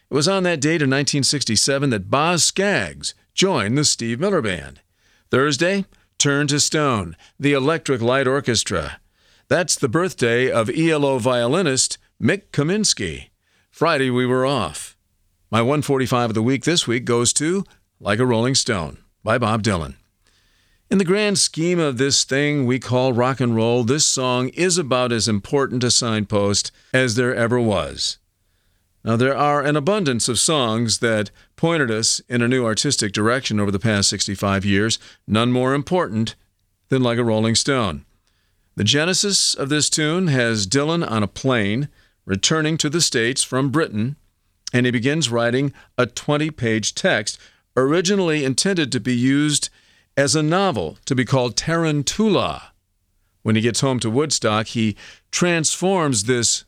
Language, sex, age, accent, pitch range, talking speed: English, male, 50-69, American, 105-145 Hz, 155 wpm